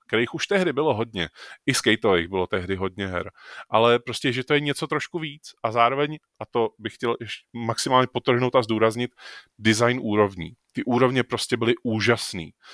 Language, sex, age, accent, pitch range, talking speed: Czech, male, 30-49, native, 105-125 Hz, 175 wpm